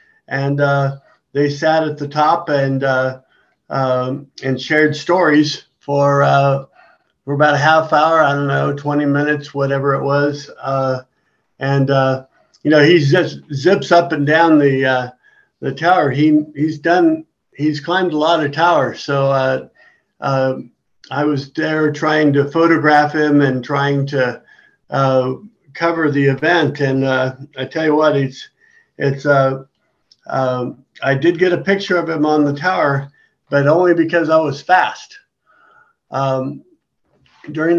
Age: 50-69